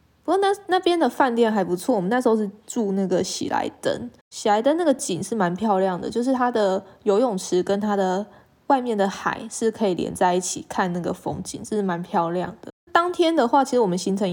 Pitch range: 185-235 Hz